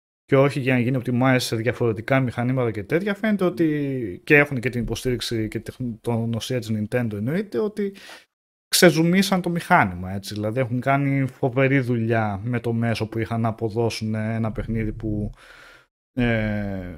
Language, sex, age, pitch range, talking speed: Greek, male, 30-49, 110-150 Hz, 160 wpm